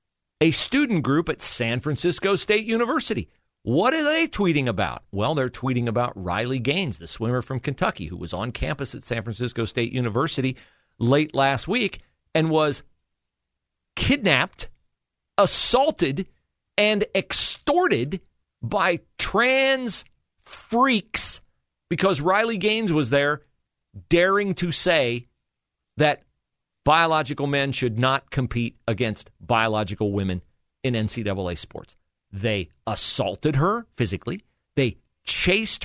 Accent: American